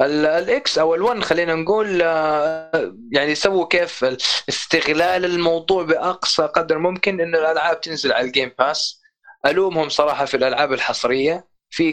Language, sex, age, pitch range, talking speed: Arabic, male, 20-39, 140-190 Hz, 125 wpm